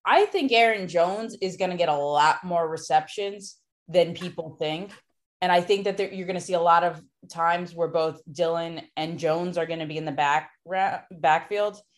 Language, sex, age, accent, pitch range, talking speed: English, female, 20-39, American, 165-200 Hz, 200 wpm